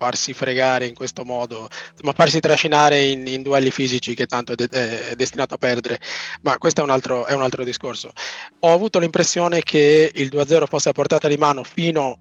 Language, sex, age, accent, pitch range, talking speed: Italian, male, 20-39, native, 125-150 Hz, 200 wpm